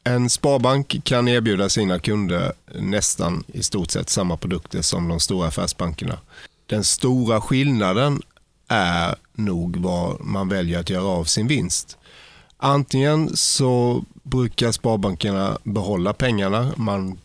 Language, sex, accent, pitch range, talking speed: Swedish, male, native, 90-115 Hz, 125 wpm